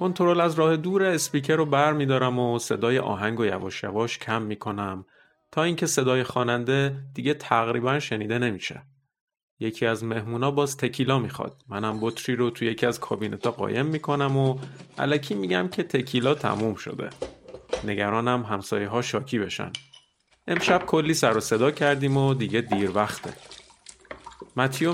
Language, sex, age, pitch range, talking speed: Persian, male, 30-49, 115-150 Hz, 150 wpm